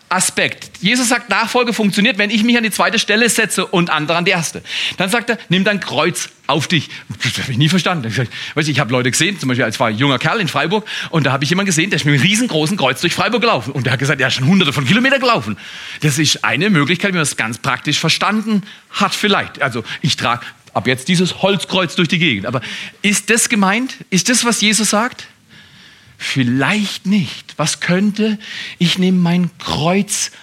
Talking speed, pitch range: 215 wpm, 125-200 Hz